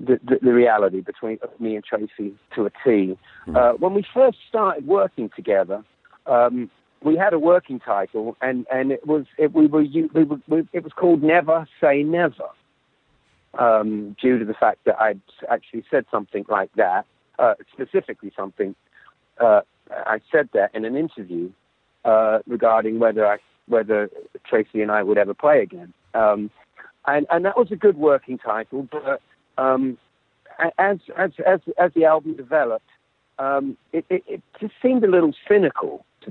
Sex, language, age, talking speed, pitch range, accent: male, English, 50-69, 170 wpm, 115-160 Hz, British